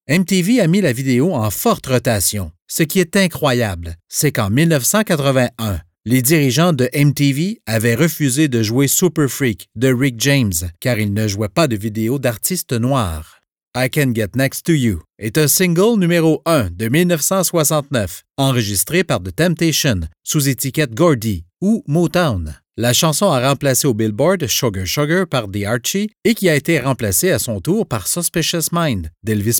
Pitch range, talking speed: 110-165 Hz, 165 wpm